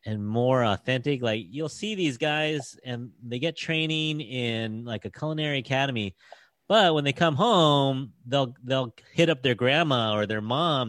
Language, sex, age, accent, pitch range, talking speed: English, male, 30-49, American, 105-145 Hz, 170 wpm